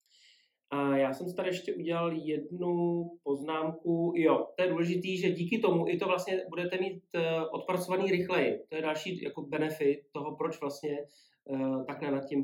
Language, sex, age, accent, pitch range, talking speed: Czech, male, 30-49, native, 145-200 Hz, 170 wpm